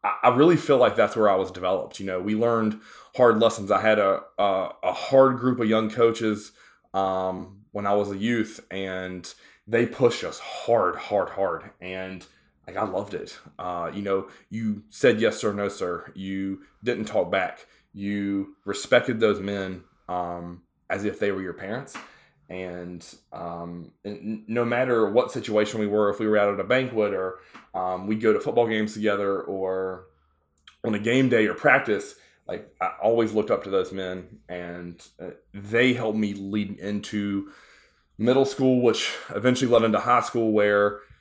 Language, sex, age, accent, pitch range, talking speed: English, male, 20-39, American, 95-110 Hz, 175 wpm